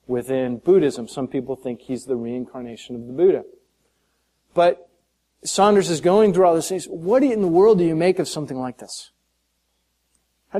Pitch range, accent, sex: 110-165 Hz, American, male